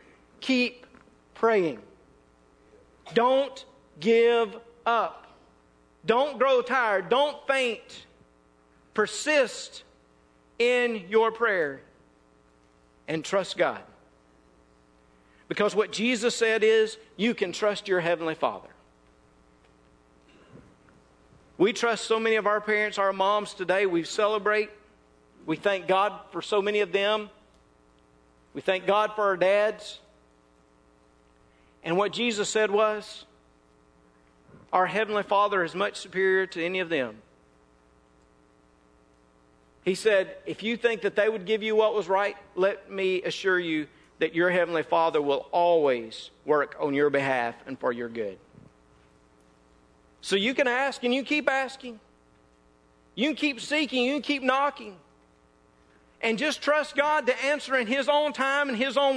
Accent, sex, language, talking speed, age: American, male, English, 130 wpm, 50-69